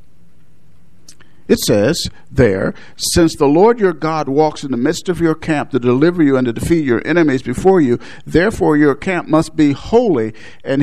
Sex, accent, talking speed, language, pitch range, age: male, American, 175 wpm, English, 125-170 Hz, 50-69